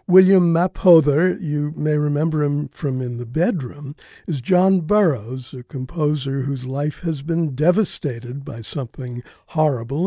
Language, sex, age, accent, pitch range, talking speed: English, male, 60-79, American, 135-175 Hz, 135 wpm